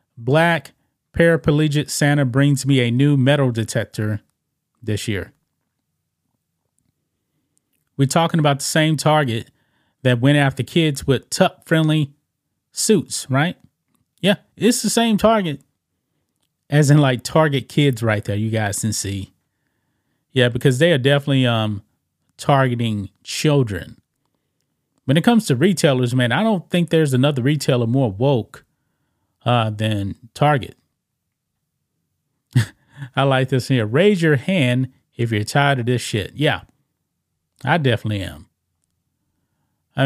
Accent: American